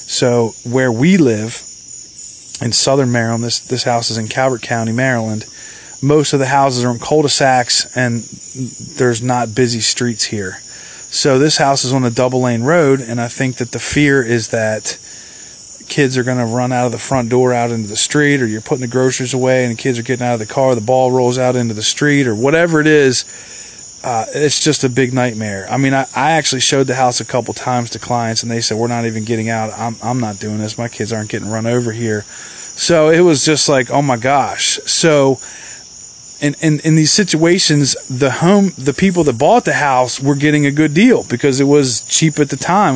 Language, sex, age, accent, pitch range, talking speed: English, male, 30-49, American, 120-145 Hz, 220 wpm